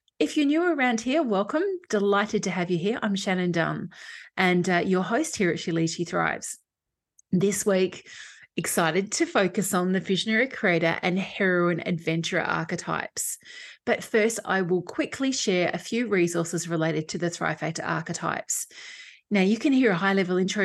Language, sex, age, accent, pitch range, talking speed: English, female, 30-49, Australian, 175-230 Hz, 165 wpm